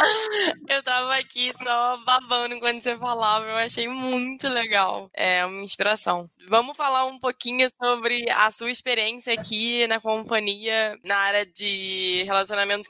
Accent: Brazilian